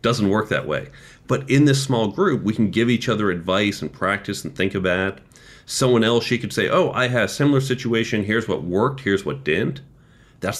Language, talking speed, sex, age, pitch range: English, 215 wpm, male, 40-59, 100-130 Hz